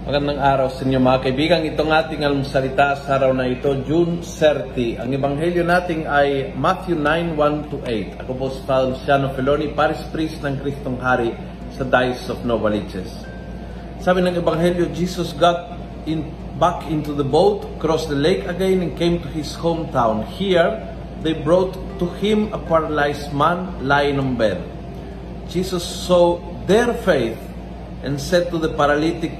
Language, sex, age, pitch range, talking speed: Filipino, male, 40-59, 140-175 Hz, 160 wpm